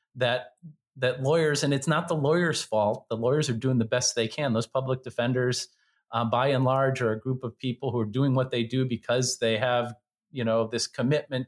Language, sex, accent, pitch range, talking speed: English, male, American, 110-135 Hz, 220 wpm